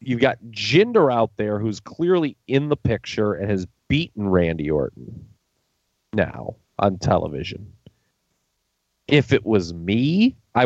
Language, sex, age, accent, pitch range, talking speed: English, male, 30-49, American, 100-120 Hz, 130 wpm